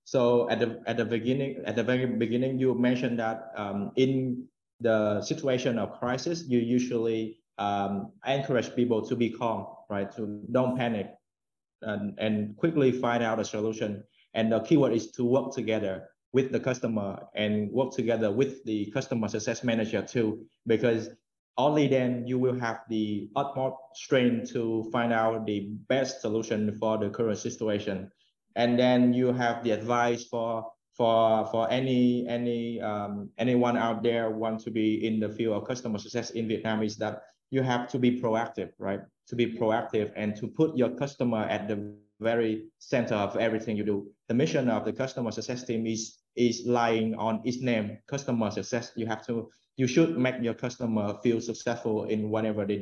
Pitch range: 110-125 Hz